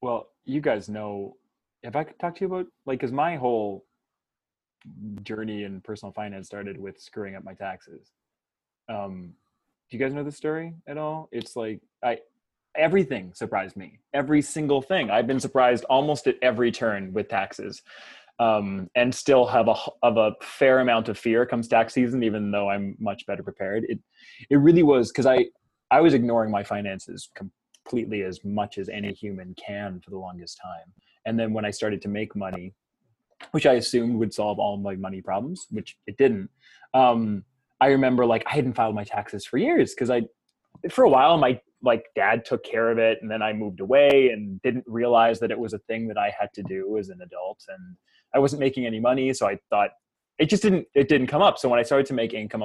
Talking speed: 205 wpm